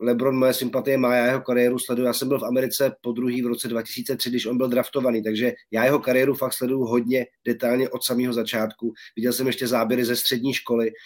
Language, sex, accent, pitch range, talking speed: Czech, male, native, 120-130 Hz, 215 wpm